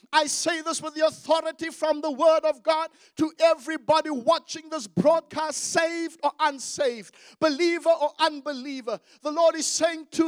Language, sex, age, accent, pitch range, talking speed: English, male, 50-69, South African, 285-335 Hz, 160 wpm